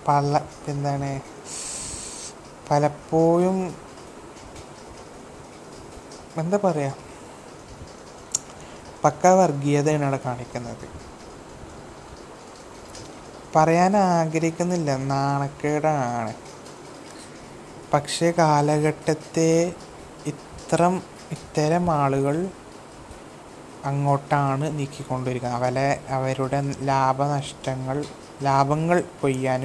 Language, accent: Malayalam, native